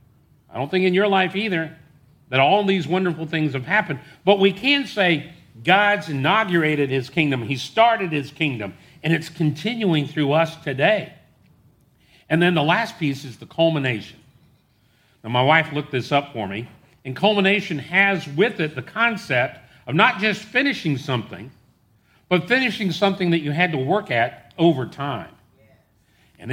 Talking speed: 165 wpm